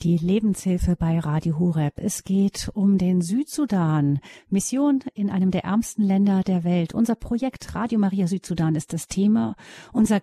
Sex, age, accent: female, 40-59, German